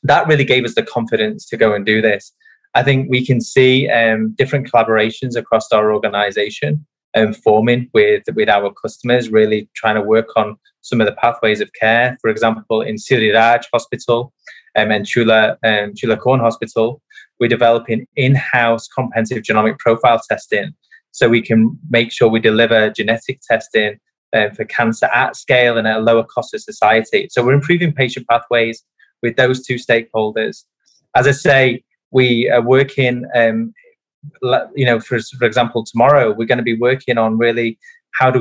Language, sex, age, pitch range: Thai, male, 20-39, 115-130 Hz